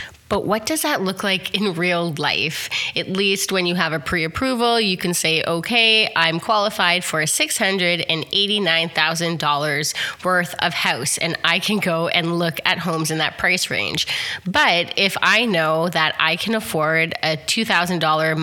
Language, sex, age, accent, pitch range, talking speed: English, female, 20-39, American, 160-210 Hz, 165 wpm